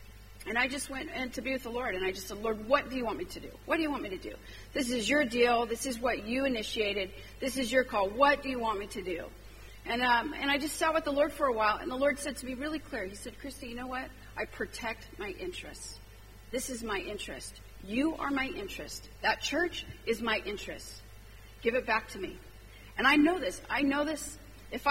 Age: 40-59